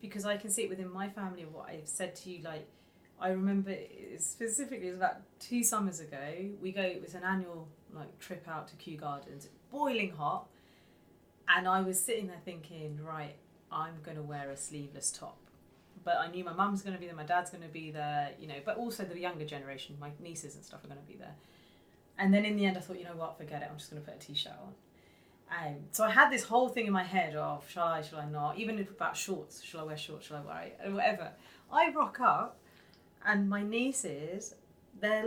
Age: 30-49